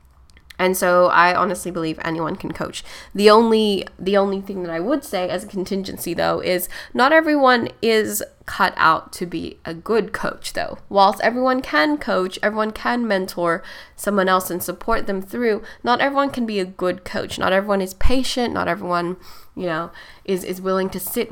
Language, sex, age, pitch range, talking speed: English, female, 10-29, 175-225 Hz, 185 wpm